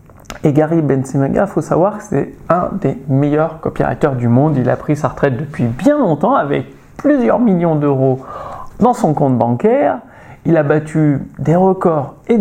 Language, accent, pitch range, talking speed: French, French, 140-205 Hz, 175 wpm